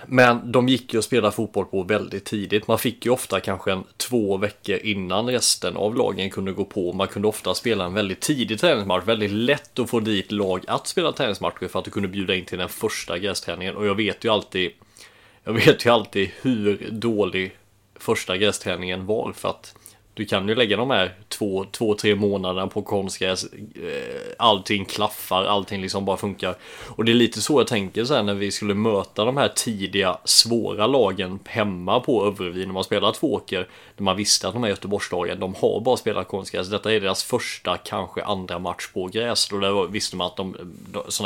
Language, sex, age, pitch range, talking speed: English, male, 30-49, 95-115 Hz, 195 wpm